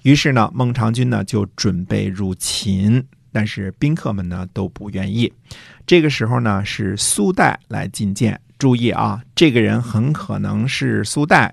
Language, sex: Chinese, male